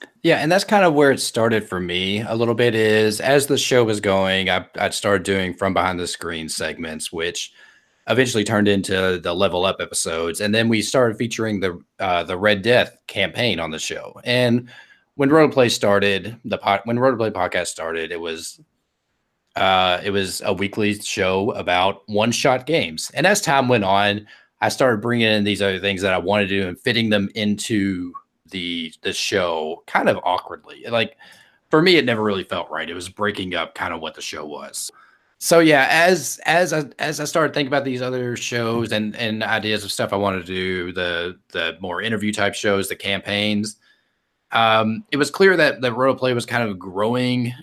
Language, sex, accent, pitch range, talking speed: English, male, American, 95-125 Hz, 200 wpm